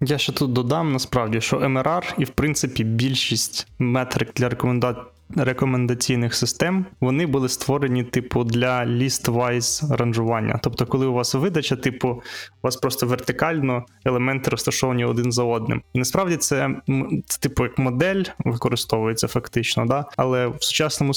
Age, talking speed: 20-39, 140 wpm